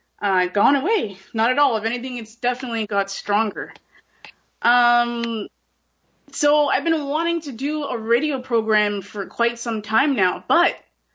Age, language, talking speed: 20-39, English, 150 wpm